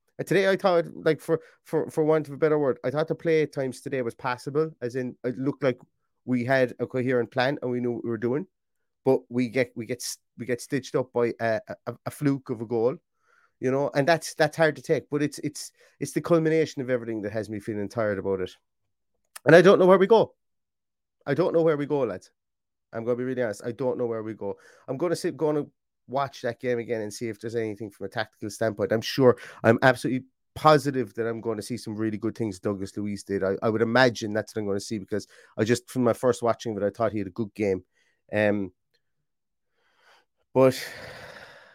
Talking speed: 235 wpm